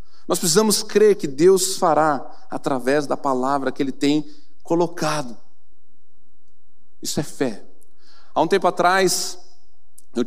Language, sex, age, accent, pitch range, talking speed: Portuguese, male, 40-59, Brazilian, 155-215 Hz, 125 wpm